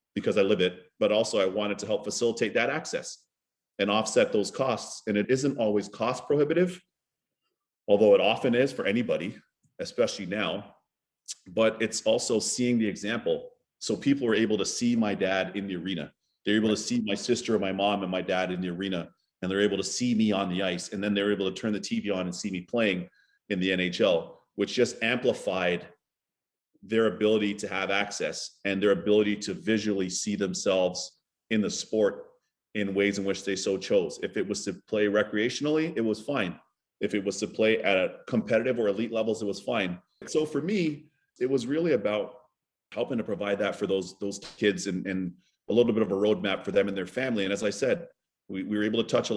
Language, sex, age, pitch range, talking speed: English, male, 40-59, 95-120 Hz, 215 wpm